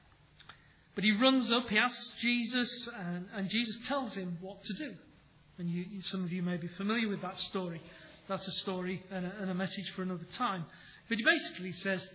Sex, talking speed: male, 200 wpm